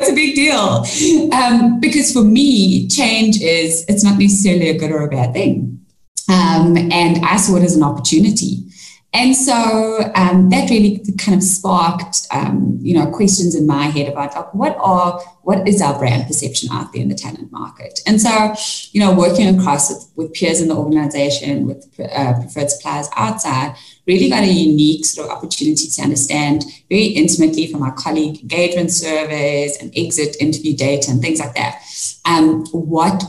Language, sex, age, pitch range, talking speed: English, female, 20-39, 145-195 Hz, 180 wpm